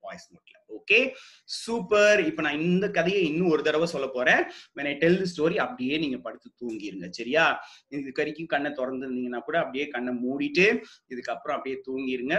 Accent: native